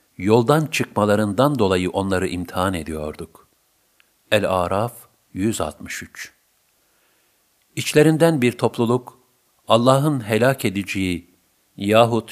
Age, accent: 50-69, native